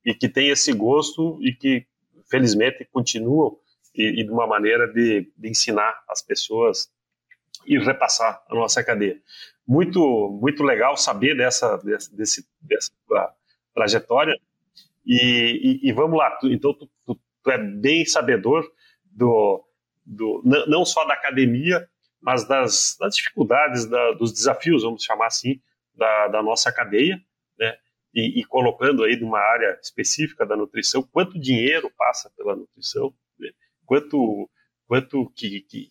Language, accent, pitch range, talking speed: Portuguese, Brazilian, 120-195 Hz, 140 wpm